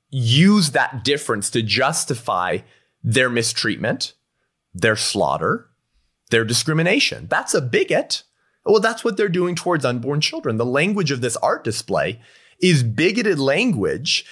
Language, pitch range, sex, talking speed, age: English, 120-170 Hz, male, 130 wpm, 30-49